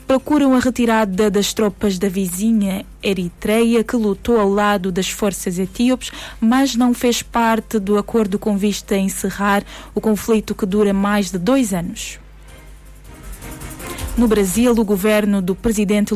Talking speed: 145 wpm